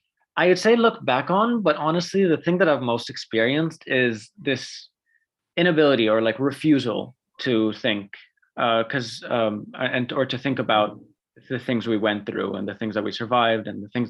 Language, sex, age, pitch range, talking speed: English, male, 20-39, 110-160 Hz, 185 wpm